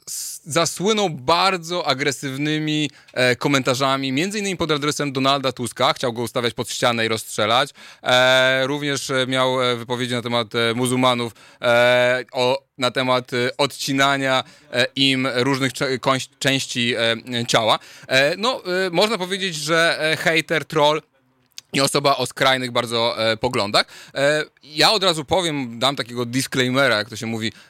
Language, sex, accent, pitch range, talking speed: Polish, male, native, 120-145 Hz, 140 wpm